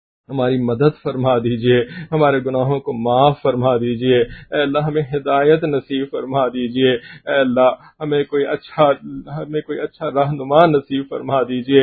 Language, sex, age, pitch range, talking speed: English, male, 50-69, 140-165 Hz, 145 wpm